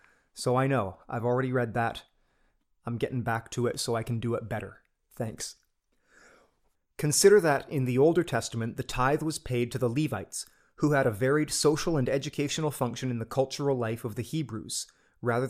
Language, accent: English, American